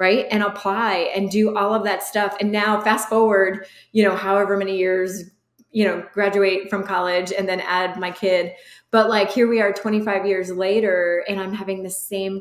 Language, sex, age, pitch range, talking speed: English, female, 20-39, 195-230 Hz, 200 wpm